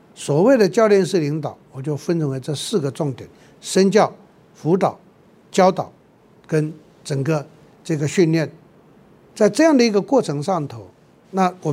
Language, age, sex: Chinese, 60-79, male